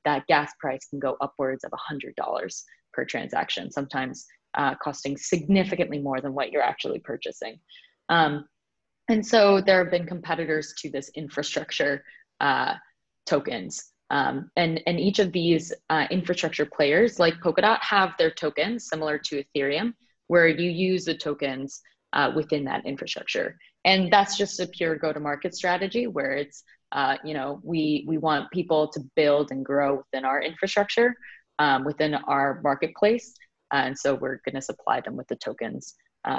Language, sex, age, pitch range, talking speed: English, female, 20-39, 145-190 Hz, 160 wpm